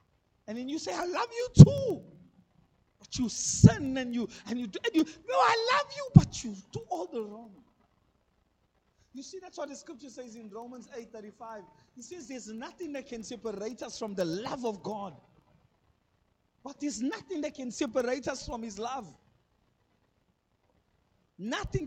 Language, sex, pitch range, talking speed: English, male, 235-315 Hz, 175 wpm